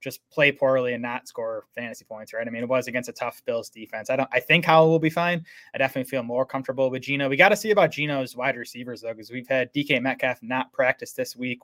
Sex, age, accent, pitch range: male, 20-39, American, 120-140 Hz